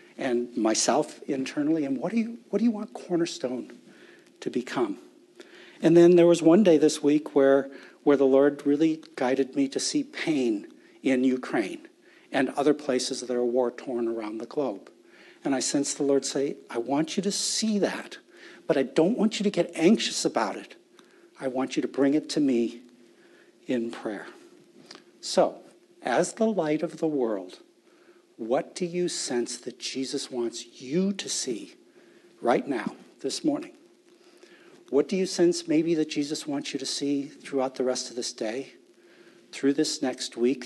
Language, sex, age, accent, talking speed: English, male, 60-79, American, 175 wpm